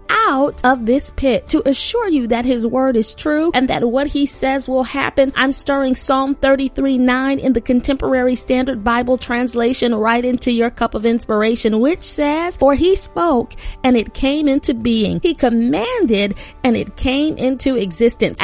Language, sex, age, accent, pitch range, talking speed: English, female, 30-49, American, 230-280 Hz, 175 wpm